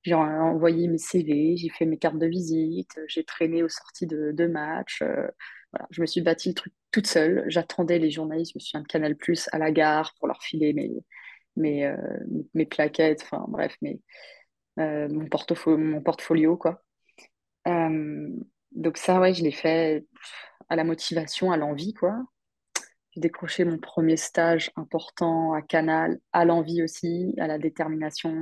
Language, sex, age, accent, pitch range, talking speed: French, female, 20-39, French, 155-170 Hz, 175 wpm